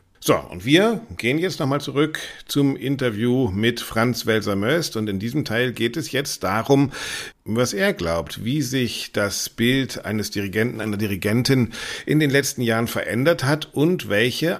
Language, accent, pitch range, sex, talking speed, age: German, German, 100-130 Hz, male, 160 wpm, 50-69